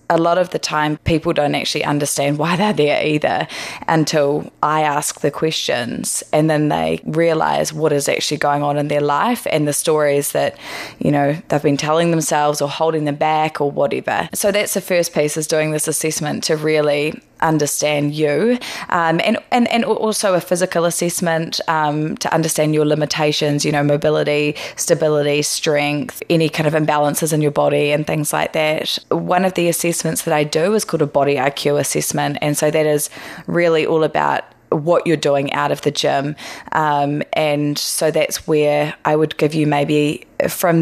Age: 20-39